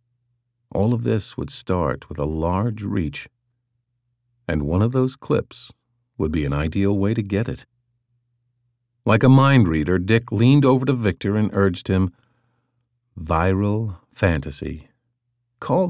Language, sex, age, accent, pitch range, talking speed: English, male, 50-69, American, 100-120 Hz, 140 wpm